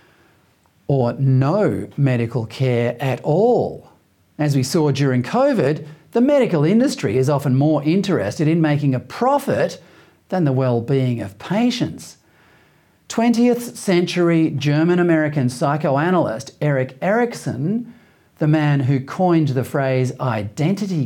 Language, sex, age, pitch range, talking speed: English, male, 40-59, 135-185 Hz, 115 wpm